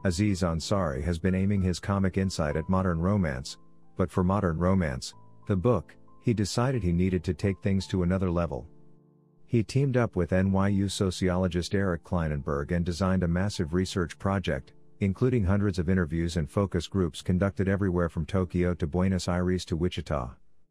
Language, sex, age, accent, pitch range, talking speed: Tamil, male, 50-69, American, 85-105 Hz, 165 wpm